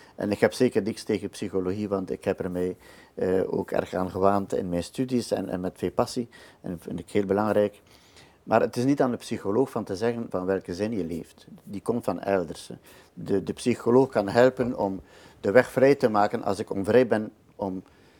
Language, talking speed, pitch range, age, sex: Dutch, 220 wpm, 95-115 Hz, 50-69, male